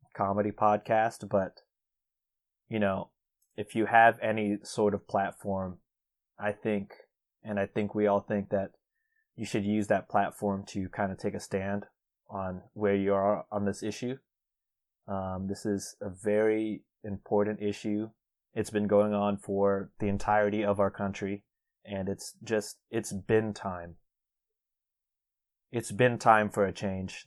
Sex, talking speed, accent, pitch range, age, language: male, 150 wpm, American, 100-110 Hz, 30-49, English